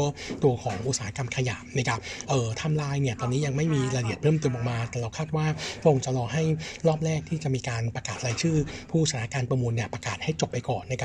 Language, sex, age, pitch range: Thai, male, 60-79, 120-150 Hz